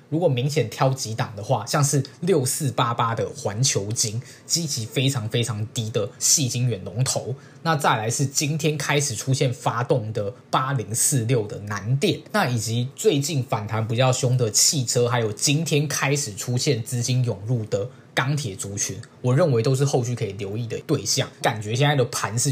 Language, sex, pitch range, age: Chinese, male, 115-145 Hz, 20-39